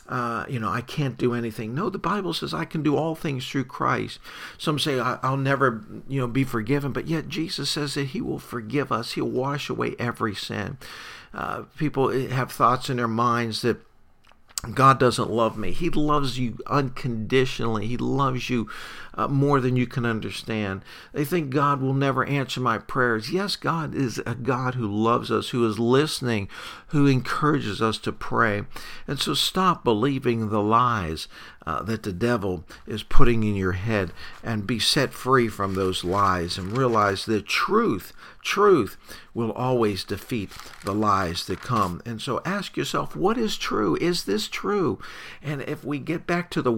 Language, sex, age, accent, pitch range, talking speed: English, male, 50-69, American, 110-140 Hz, 180 wpm